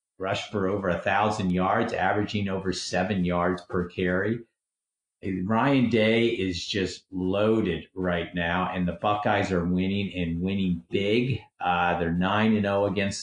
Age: 50-69